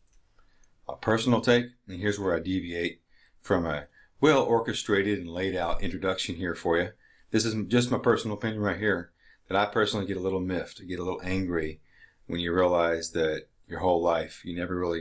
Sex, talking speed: male, 190 wpm